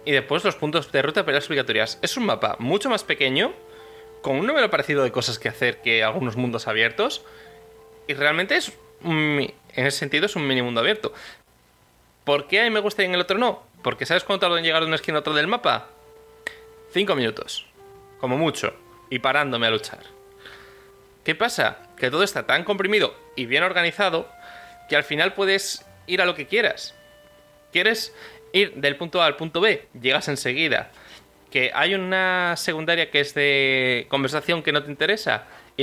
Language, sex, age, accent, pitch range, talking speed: Spanish, male, 20-39, Spanish, 135-195 Hz, 190 wpm